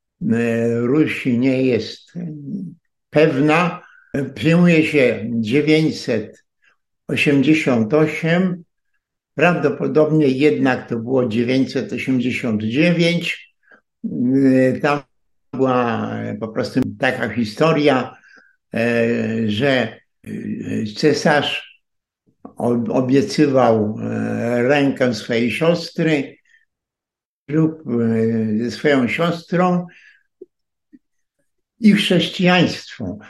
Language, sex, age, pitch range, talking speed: Polish, male, 60-79, 120-155 Hz, 50 wpm